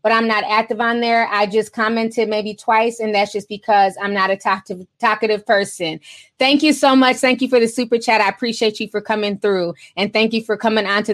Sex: female